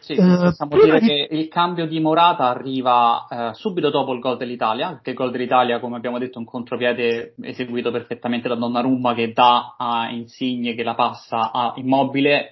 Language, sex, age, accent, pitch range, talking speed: Italian, male, 20-39, native, 125-155 Hz, 180 wpm